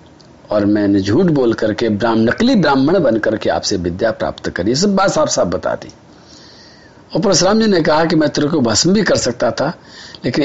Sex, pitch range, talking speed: male, 150-245 Hz, 190 wpm